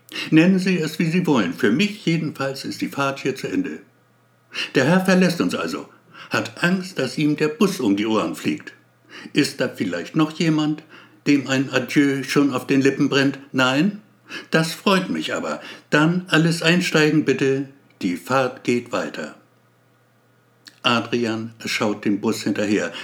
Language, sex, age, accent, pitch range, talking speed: German, male, 60-79, German, 110-150 Hz, 160 wpm